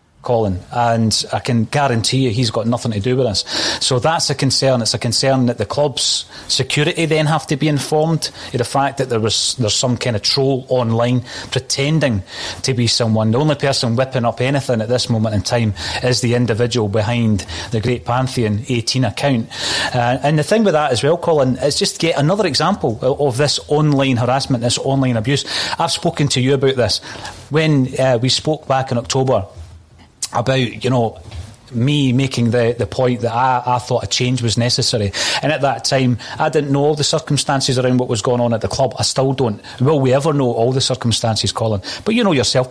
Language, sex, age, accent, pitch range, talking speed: English, male, 30-49, British, 115-140 Hz, 210 wpm